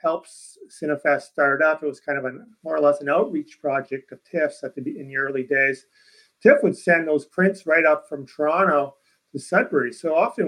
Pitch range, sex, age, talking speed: 140-160 Hz, male, 40-59, 205 wpm